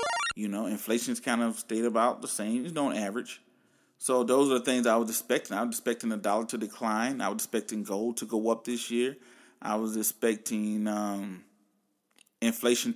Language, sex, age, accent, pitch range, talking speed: English, male, 30-49, American, 110-130 Hz, 190 wpm